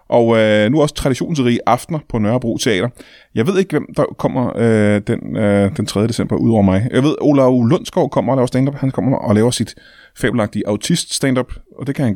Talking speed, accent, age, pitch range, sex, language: 215 wpm, native, 30-49, 105-140 Hz, male, Danish